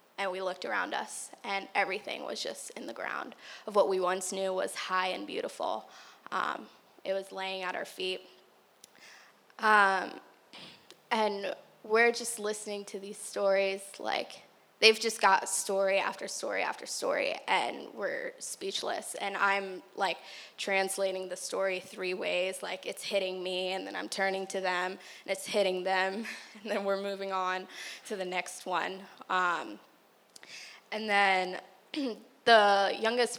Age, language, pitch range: 10-29, English, 190-210 Hz